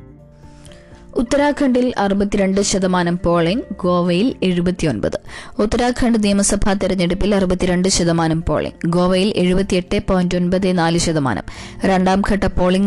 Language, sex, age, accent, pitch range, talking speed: Malayalam, female, 20-39, native, 175-205 Hz, 85 wpm